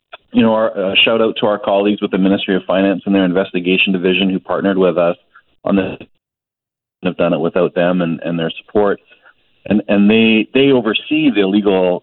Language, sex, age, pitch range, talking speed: English, male, 40-59, 95-110 Hz, 205 wpm